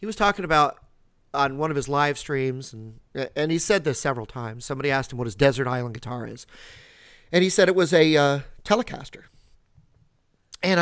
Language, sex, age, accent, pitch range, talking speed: English, male, 40-59, American, 125-160 Hz, 195 wpm